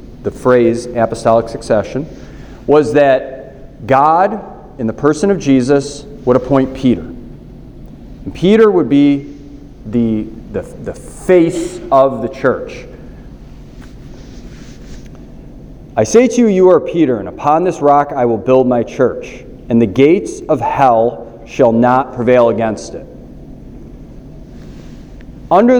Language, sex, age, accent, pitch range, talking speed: English, male, 40-59, American, 120-150 Hz, 120 wpm